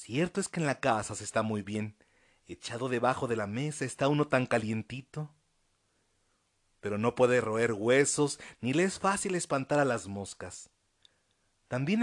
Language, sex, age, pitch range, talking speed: Spanish, male, 40-59, 110-155 Hz, 165 wpm